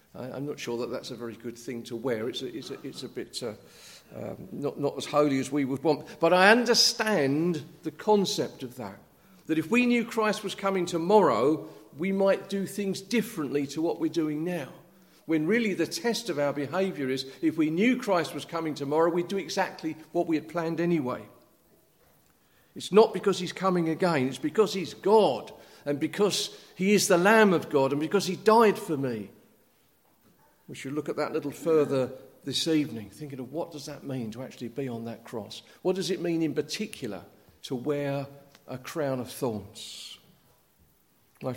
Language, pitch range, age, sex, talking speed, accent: English, 135-180 Hz, 50-69, male, 190 wpm, British